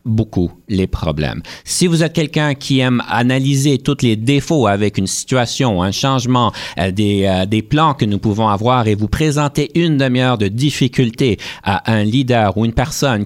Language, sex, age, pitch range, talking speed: French, male, 50-69, 110-150 Hz, 175 wpm